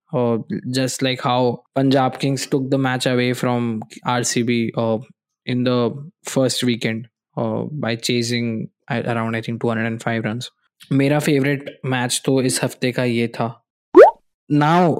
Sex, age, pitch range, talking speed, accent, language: male, 20-39, 125-145 Hz, 150 wpm, native, Hindi